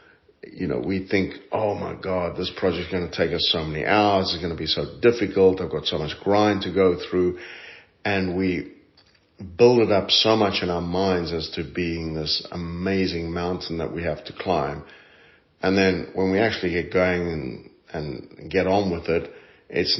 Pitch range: 85-100 Hz